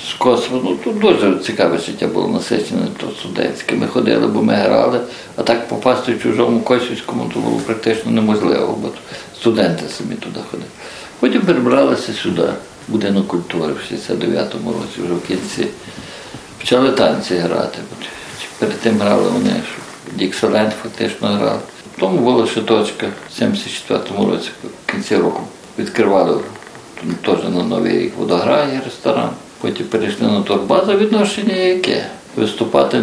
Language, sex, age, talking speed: Ukrainian, male, 50-69, 135 wpm